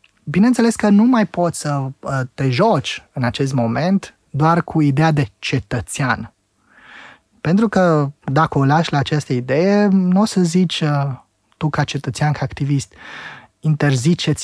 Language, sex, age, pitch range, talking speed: Romanian, male, 20-39, 135-170 Hz, 140 wpm